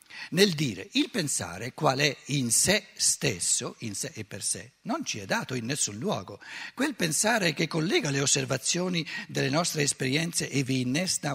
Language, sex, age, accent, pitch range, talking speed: Italian, male, 50-69, native, 130-190 Hz, 175 wpm